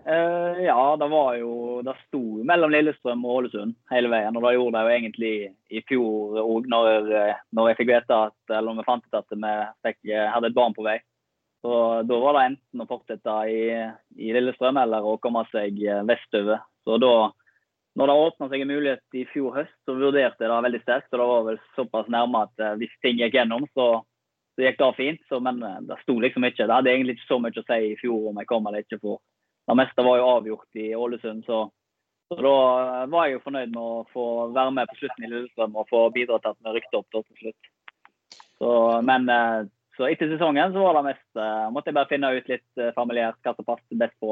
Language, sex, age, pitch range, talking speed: English, male, 20-39, 110-130 Hz, 215 wpm